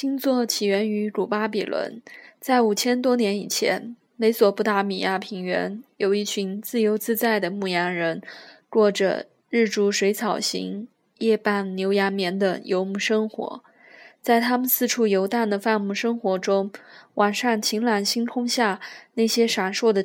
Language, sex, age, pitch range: Chinese, female, 20-39, 200-235 Hz